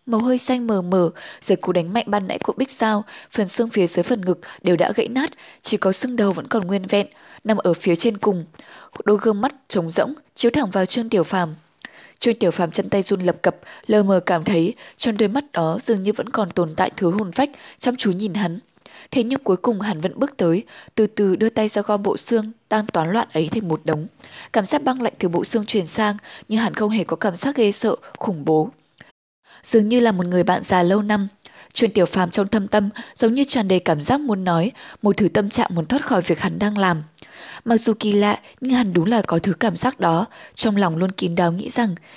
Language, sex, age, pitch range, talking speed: Vietnamese, female, 10-29, 185-230 Hz, 250 wpm